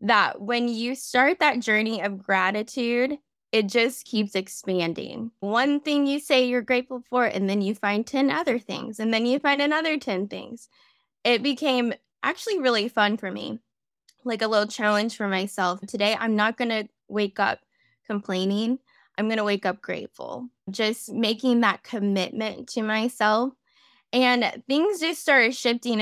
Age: 10-29